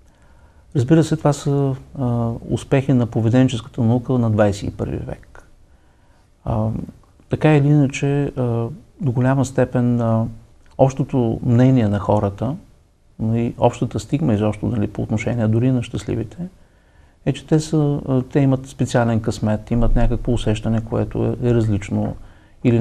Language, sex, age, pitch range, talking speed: Bulgarian, male, 50-69, 110-135 Hz, 135 wpm